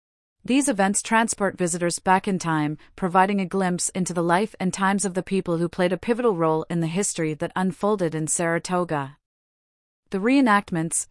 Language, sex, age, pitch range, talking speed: English, female, 30-49, 165-195 Hz, 175 wpm